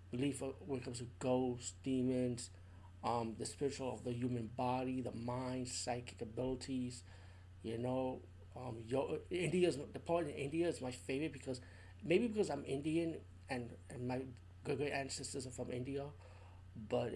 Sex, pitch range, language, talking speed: male, 110-135 Hz, English, 150 wpm